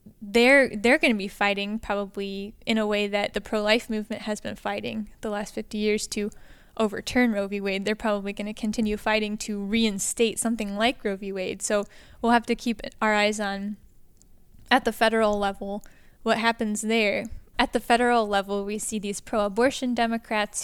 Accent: American